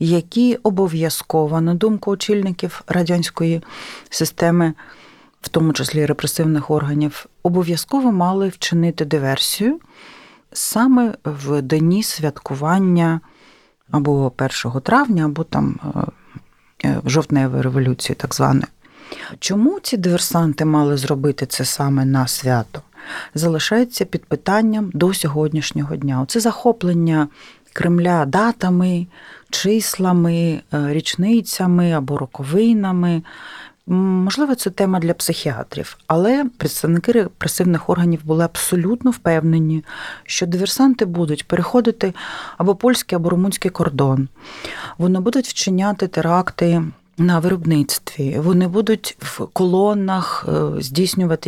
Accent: native